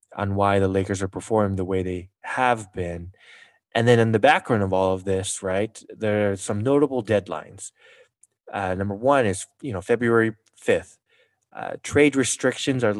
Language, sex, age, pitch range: English, male, 20-39, 100-115 Hz